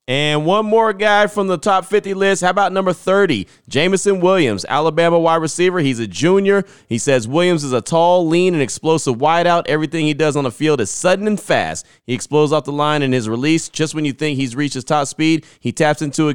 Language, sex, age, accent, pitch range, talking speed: English, male, 30-49, American, 125-155 Hz, 230 wpm